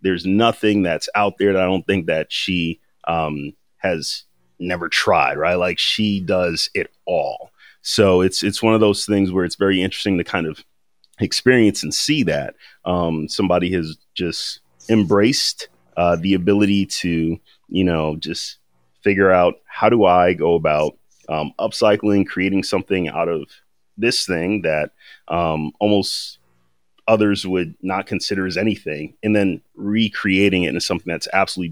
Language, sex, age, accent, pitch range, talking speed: English, male, 30-49, American, 85-100 Hz, 160 wpm